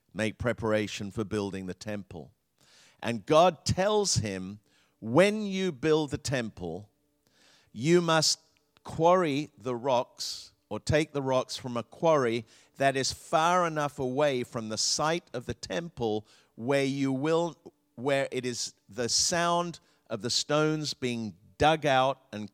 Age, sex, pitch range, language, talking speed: 50-69, male, 105-145 Hz, English, 140 wpm